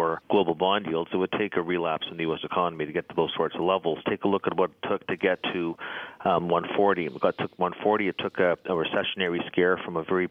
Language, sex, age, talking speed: English, male, 40-59, 290 wpm